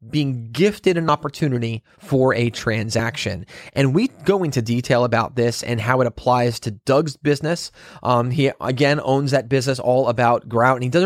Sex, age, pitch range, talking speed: male, 30-49, 125-155 Hz, 180 wpm